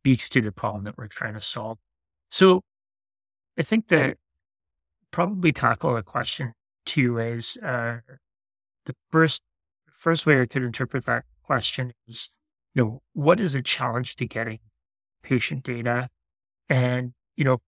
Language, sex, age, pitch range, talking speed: English, male, 30-49, 105-130 Hz, 145 wpm